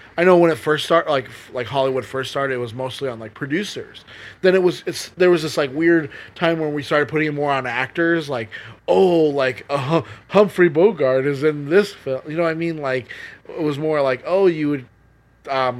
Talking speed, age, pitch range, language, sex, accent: 220 wpm, 20-39, 130-165 Hz, English, male, American